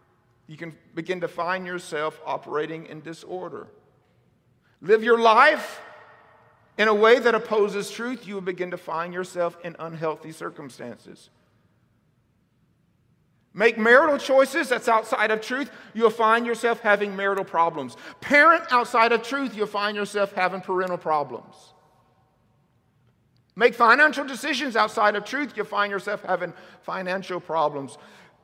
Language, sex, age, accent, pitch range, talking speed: English, male, 50-69, American, 170-245 Hz, 130 wpm